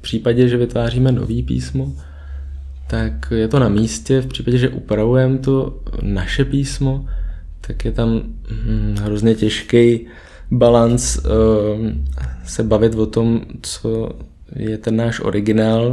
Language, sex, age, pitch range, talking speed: Czech, male, 20-39, 100-115 Hz, 125 wpm